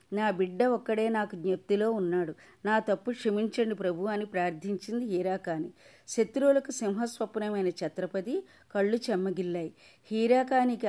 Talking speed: 105 wpm